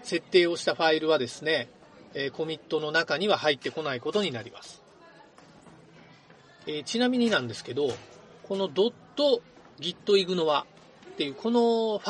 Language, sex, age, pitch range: Japanese, male, 40-59, 160-245 Hz